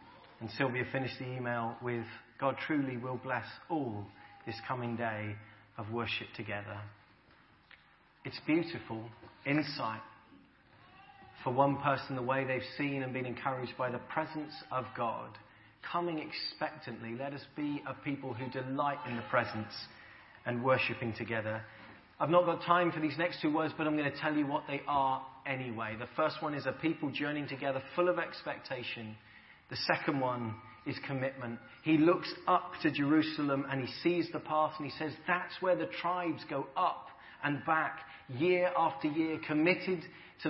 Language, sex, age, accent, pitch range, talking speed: English, male, 30-49, British, 120-155 Hz, 165 wpm